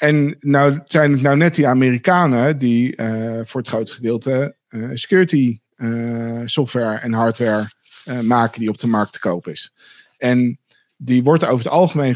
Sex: male